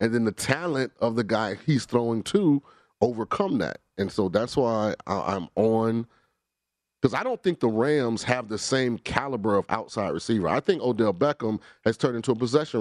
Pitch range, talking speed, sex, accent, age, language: 110-135 Hz, 185 wpm, male, American, 30-49, English